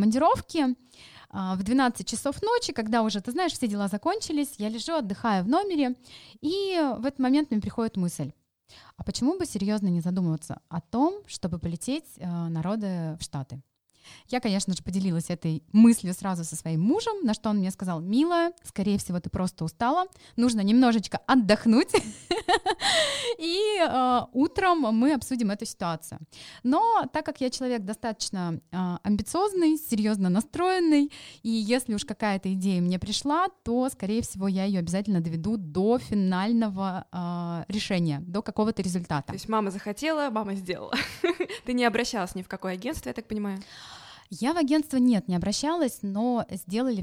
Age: 20-39